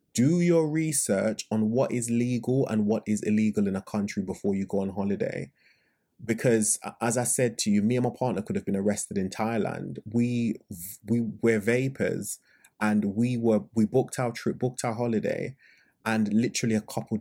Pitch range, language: 100-120 Hz, English